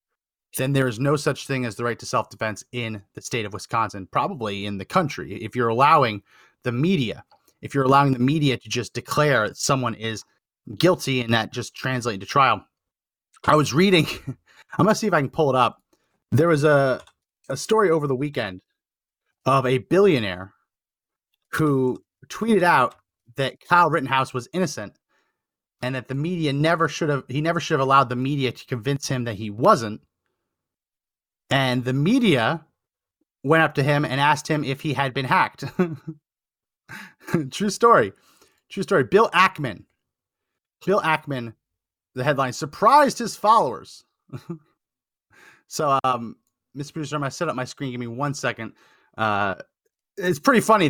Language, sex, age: English, male, 30-49